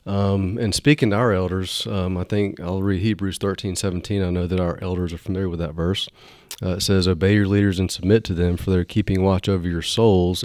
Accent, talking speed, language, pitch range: American, 235 wpm, English, 90-100 Hz